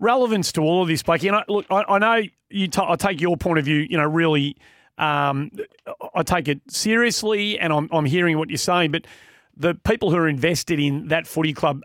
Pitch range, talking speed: 140-175 Hz, 230 wpm